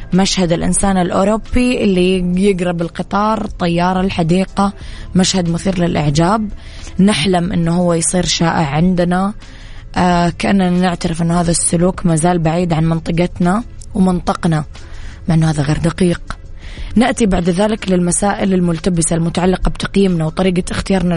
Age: 20-39